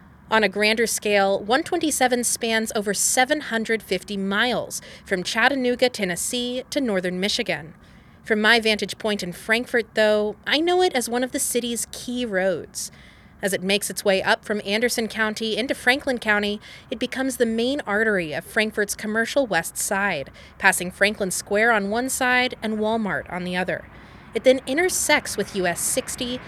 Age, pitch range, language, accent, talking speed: 30-49, 190-245 Hz, English, American, 160 wpm